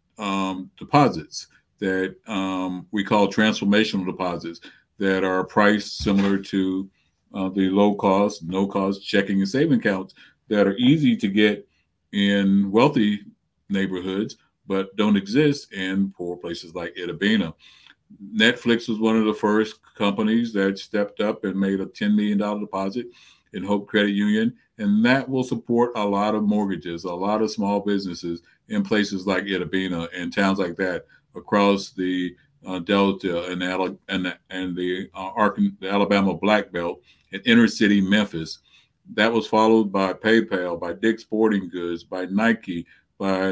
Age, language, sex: 50-69, English, male